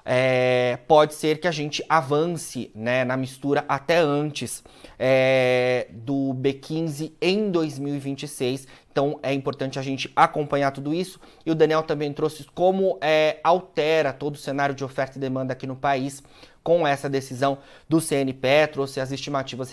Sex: male